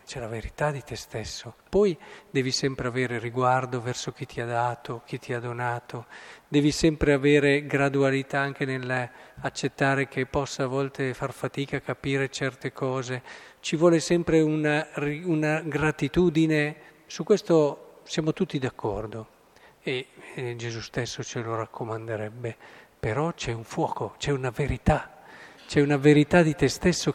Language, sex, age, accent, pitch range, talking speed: Italian, male, 40-59, native, 125-165 Hz, 150 wpm